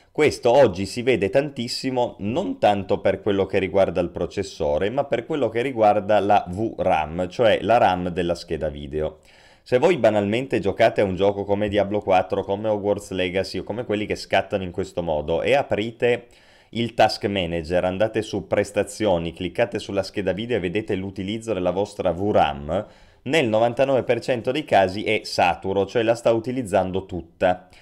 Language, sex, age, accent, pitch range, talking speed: Italian, male, 30-49, native, 95-115 Hz, 165 wpm